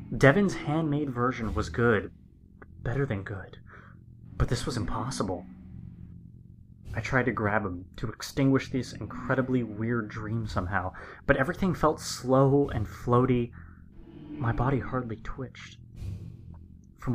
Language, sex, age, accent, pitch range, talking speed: English, male, 20-39, American, 95-125 Hz, 120 wpm